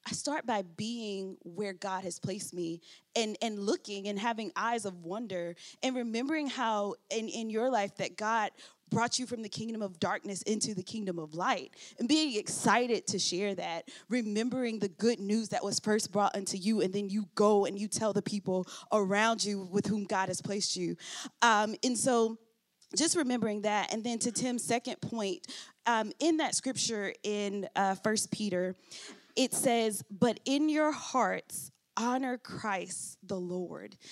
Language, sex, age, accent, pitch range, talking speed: English, female, 20-39, American, 190-235 Hz, 180 wpm